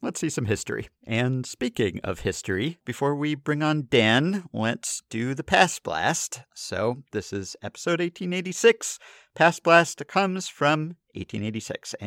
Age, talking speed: 50-69, 140 wpm